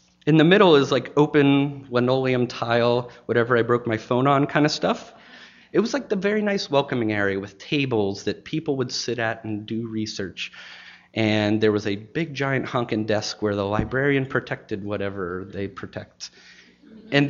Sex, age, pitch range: male, 30-49, 105-155 Hz